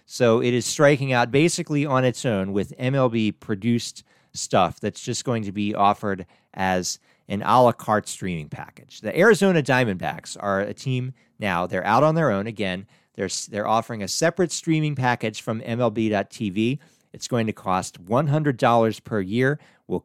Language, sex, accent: English, male, American